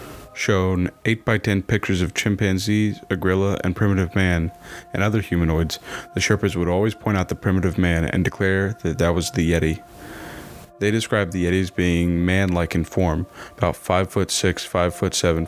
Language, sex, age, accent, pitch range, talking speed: English, male, 30-49, American, 85-100 Hz, 180 wpm